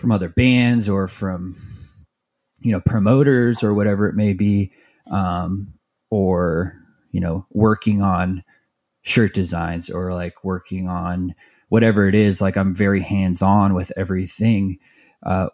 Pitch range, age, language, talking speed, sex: 90-105 Hz, 20-39, English, 135 wpm, male